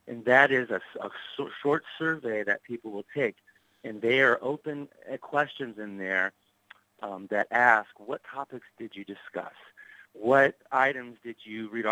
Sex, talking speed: male, 155 wpm